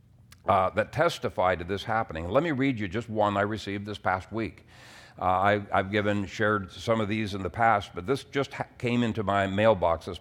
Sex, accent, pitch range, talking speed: male, American, 95-115 Hz, 215 wpm